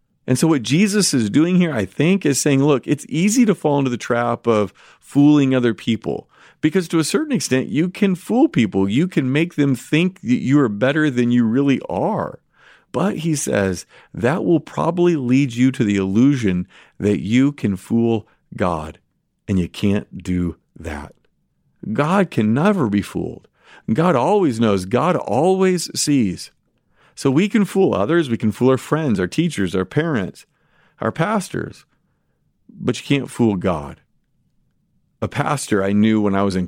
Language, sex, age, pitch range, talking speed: English, male, 40-59, 110-155 Hz, 175 wpm